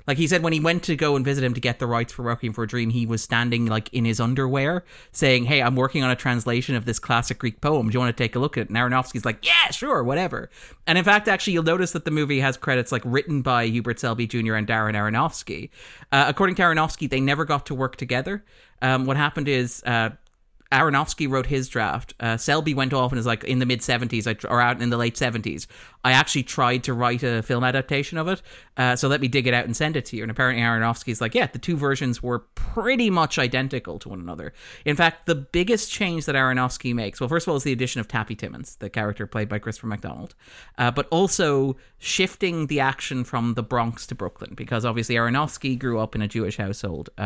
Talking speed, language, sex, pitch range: 245 wpm, English, male, 115-145 Hz